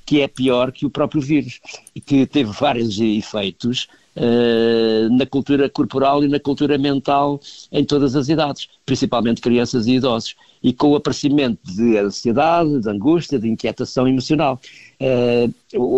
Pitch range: 115-145 Hz